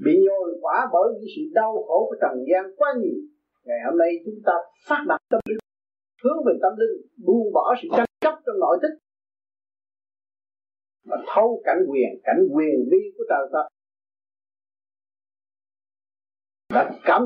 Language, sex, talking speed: Vietnamese, male, 155 wpm